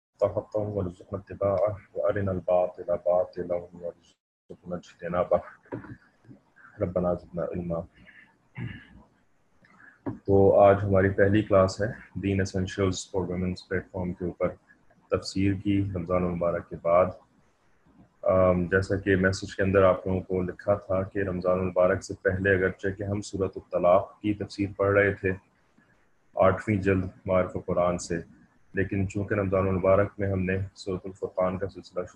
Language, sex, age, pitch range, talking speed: English, male, 30-49, 90-100 Hz, 95 wpm